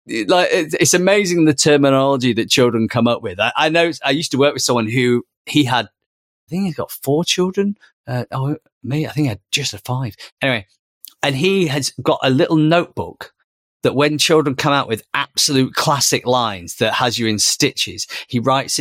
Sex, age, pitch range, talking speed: male, 30-49, 115-150 Hz, 200 wpm